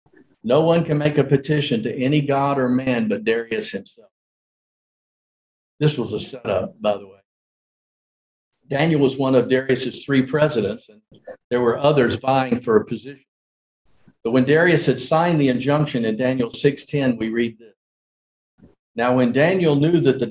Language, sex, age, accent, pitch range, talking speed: English, male, 50-69, American, 120-145 Hz, 165 wpm